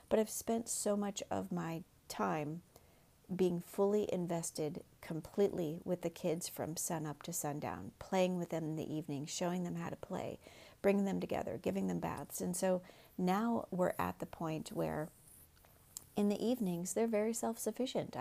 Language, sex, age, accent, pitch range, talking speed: English, female, 40-59, American, 170-200 Hz, 165 wpm